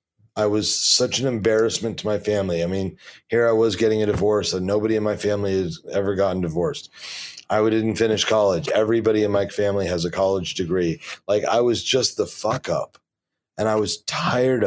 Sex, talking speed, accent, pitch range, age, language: male, 195 wpm, American, 95-110 Hz, 30-49, English